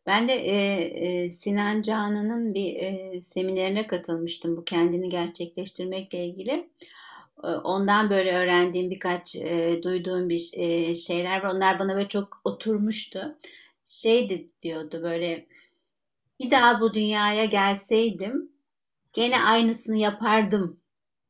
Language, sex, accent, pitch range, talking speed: Turkish, female, native, 180-245 Hz, 115 wpm